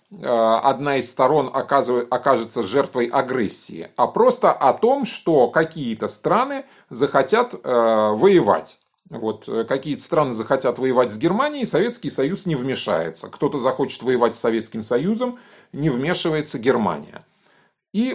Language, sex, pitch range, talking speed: Russian, male, 120-195 Hz, 120 wpm